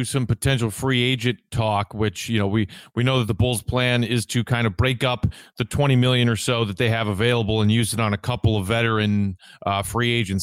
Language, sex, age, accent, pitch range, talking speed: English, male, 30-49, American, 110-135 Hz, 235 wpm